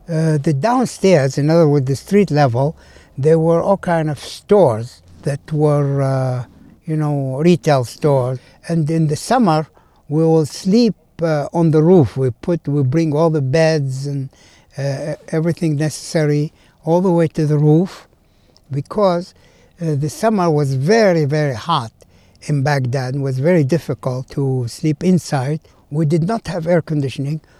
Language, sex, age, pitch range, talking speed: English, male, 60-79, 140-170 Hz, 160 wpm